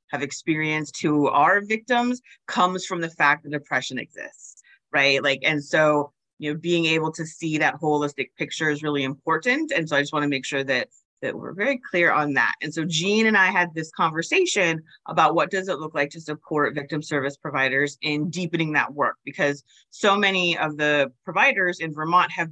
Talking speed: 200 wpm